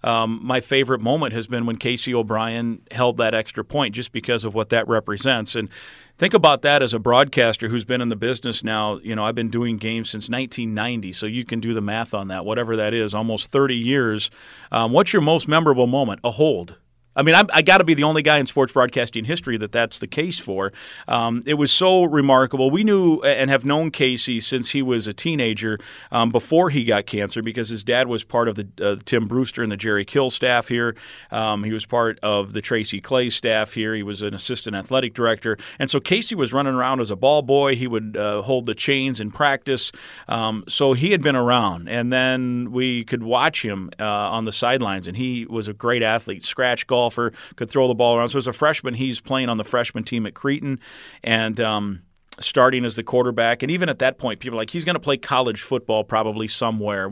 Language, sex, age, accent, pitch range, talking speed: English, male, 40-59, American, 110-135 Hz, 225 wpm